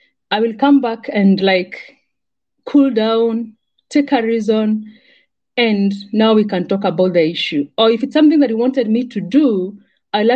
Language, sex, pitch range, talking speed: English, female, 200-265 Hz, 175 wpm